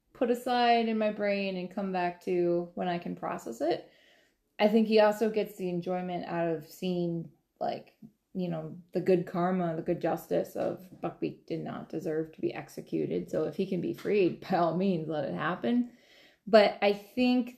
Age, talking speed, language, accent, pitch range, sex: 20-39, 190 wpm, English, American, 175-215 Hz, female